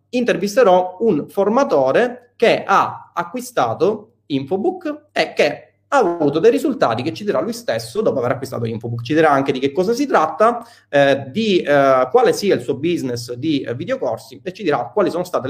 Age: 30-49